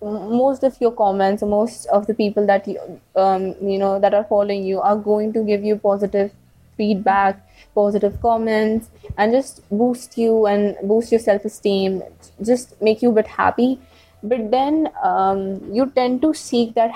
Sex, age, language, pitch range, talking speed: female, 20-39, English, 195-230 Hz, 170 wpm